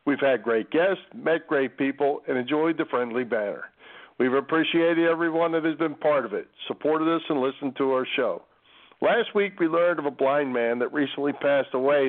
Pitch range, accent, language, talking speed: 125-160 Hz, American, English, 200 wpm